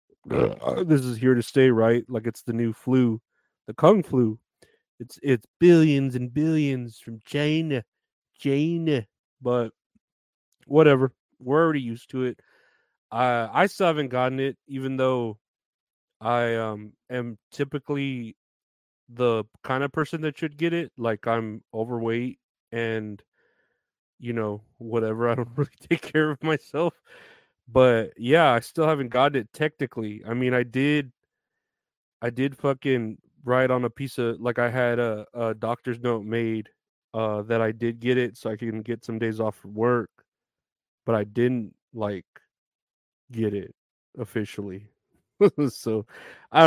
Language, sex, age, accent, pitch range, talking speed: English, male, 30-49, American, 115-140 Hz, 150 wpm